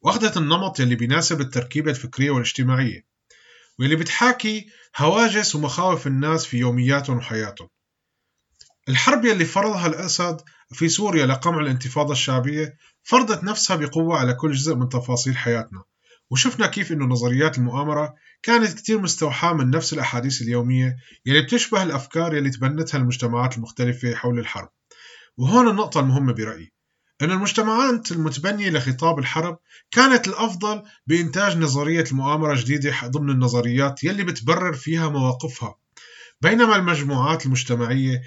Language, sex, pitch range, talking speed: Arabic, male, 125-175 Hz, 120 wpm